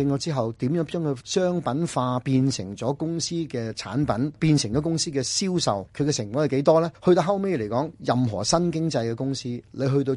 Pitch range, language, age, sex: 110-145 Hz, Chinese, 30-49, male